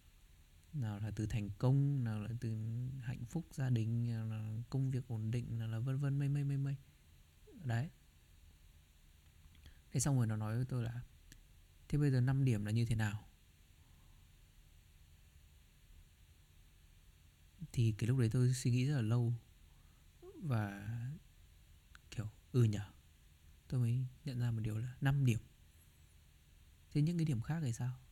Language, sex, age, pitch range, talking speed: Vietnamese, male, 20-39, 80-125 Hz, 155 wpm